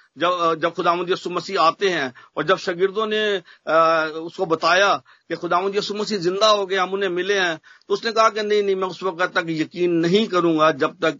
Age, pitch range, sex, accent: 50-69, 155-190 Hz, male, Indian